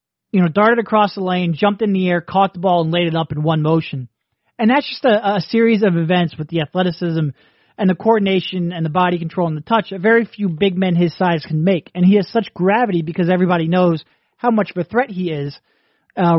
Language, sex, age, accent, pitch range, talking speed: English, male, 30-49, American, 165-205 Hz, 240 wpm